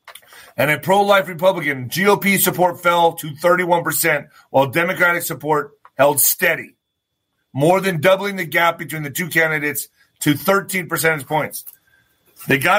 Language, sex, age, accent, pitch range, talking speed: English, male, 30-49, American, 150-195 Hz, 135 wpm